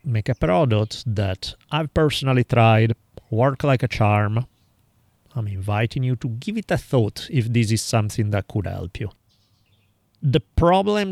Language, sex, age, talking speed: English, male, 30-49, 155 wpm